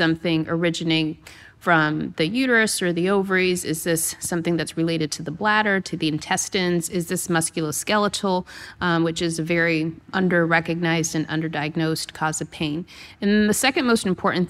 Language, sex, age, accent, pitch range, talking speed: English, female, 30-49, American, 160-195 Hz, 155 wpm